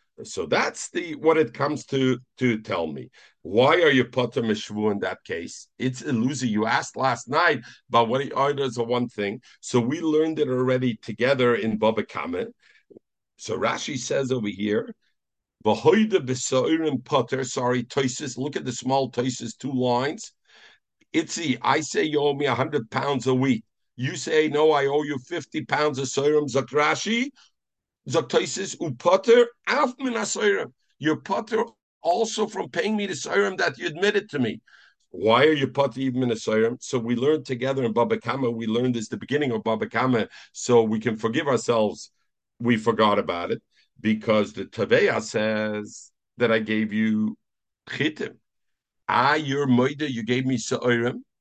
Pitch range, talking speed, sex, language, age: 115-145 Hz, 165 wpm, male, English, 50-69